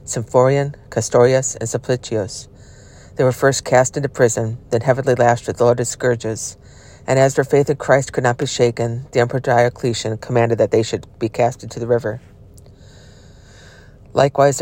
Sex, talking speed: female, 160 wpm